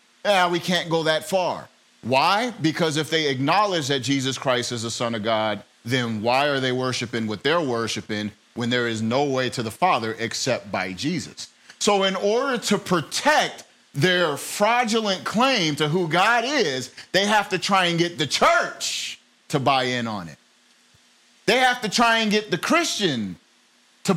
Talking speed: 180 wpm